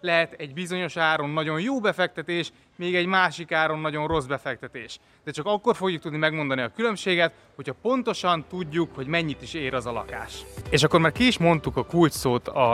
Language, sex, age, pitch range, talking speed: Hungarian, male, 20-39, 120-155 Hz, 195 wpm